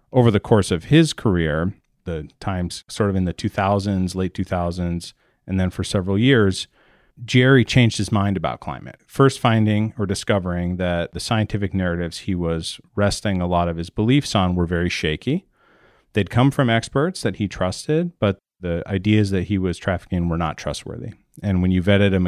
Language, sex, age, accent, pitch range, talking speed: English, male, 40-59, American, 90-110 Hz, 185 wpm